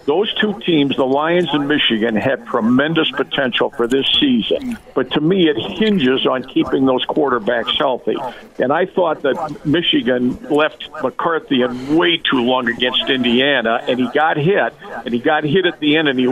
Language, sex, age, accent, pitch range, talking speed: English, male, 50-69, American, 125-165 Hz, 180 wpm